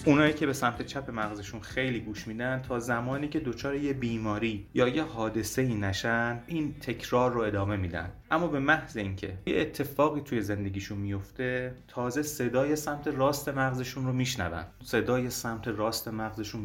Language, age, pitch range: Persian, 30-49, 105-130 Hz